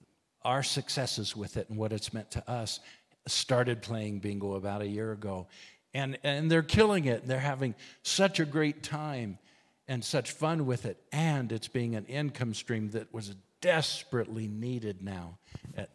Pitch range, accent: 100-130 Hz, American